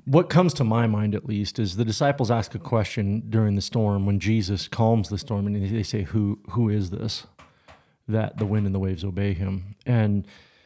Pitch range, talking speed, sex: 105-125 Hz, 210 wpm, male